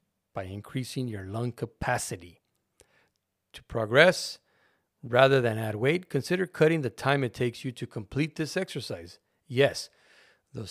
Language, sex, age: English, male, 50-69